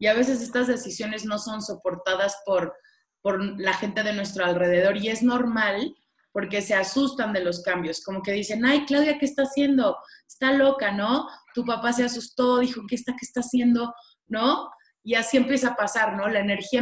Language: Spanish